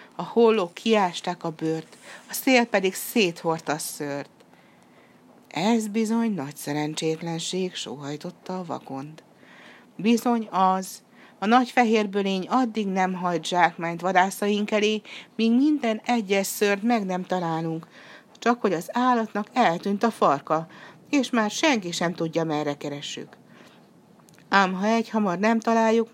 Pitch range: 155-225 Hz